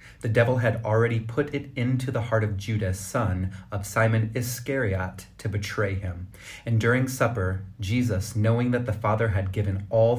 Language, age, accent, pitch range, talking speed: English, 30-49, American, 100-115 Hz, 170 wpm